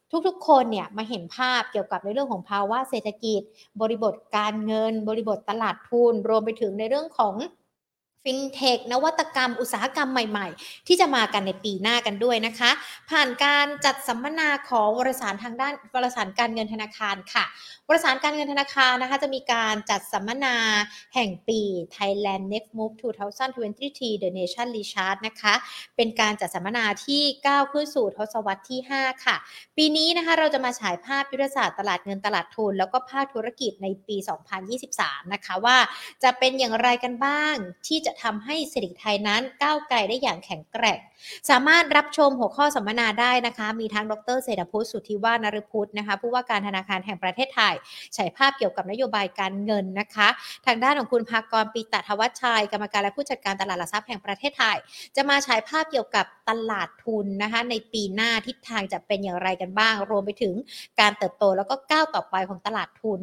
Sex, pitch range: female, 210-260 Hz